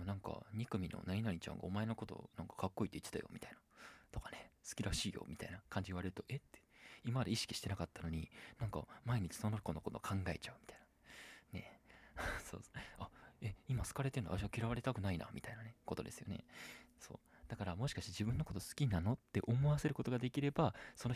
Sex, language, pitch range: male, Japanese, 90-120 Hz